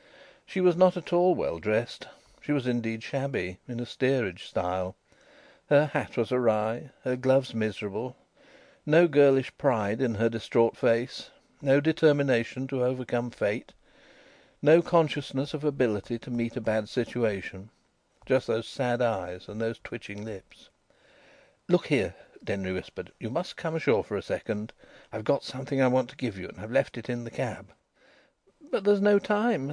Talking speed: 160 wpm